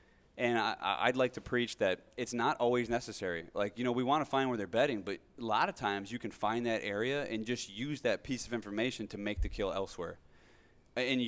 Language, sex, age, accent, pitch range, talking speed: English, male, 20-39, American, 100-120 Hz, 235 wpm